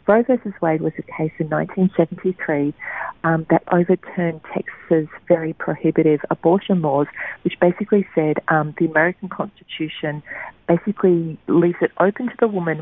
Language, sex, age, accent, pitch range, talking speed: English, female, 40-59, Australian, 155-185 Hz, 140 wpm